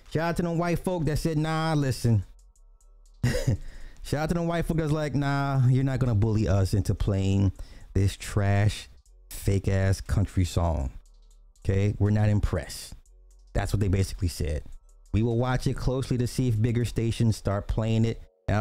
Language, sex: English, male